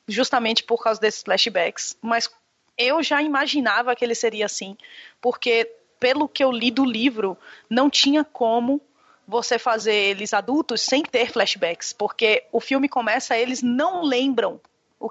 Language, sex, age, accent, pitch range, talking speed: Portuguese, female, 20-39, Brazilian, 220-285 Hz, 150 wpm